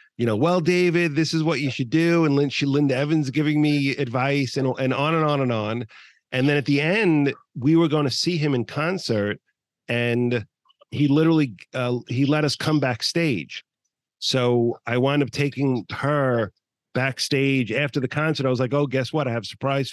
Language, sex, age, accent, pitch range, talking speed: English, male, 40-59, American, 115-145 Hz, 195 wpm